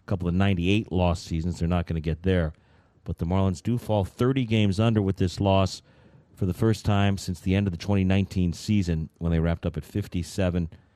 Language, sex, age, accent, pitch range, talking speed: English, male, 40-59, American, 90-115 Hz, 215 wpm